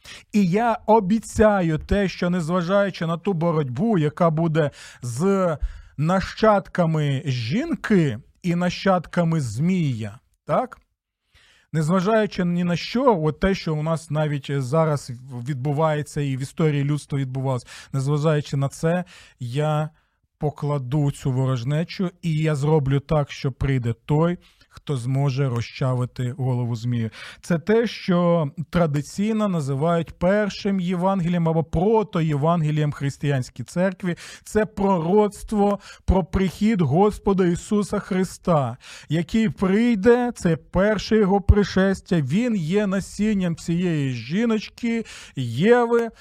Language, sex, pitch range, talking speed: Ukrainian, male, 150-200 Hz, 110 wpm